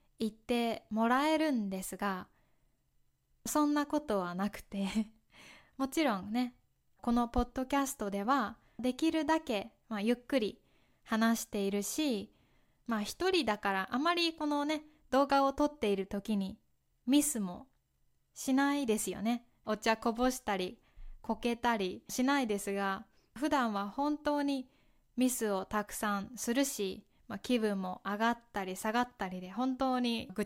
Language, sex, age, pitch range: Japanese, female, 20-39, 205-275 Hz